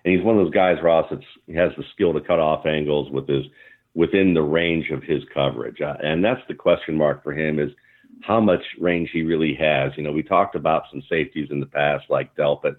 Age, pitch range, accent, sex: 50-69, 75-80 Hz, American, male